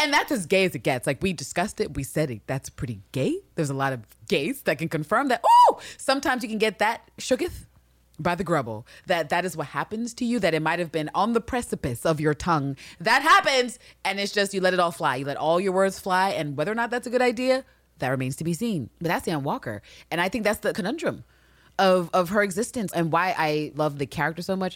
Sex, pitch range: female, 150-245 Hz